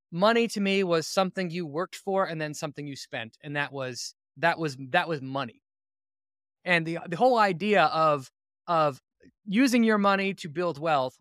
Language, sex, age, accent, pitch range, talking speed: English, male, 20-39, American, 145-190 Hz, 180 wpm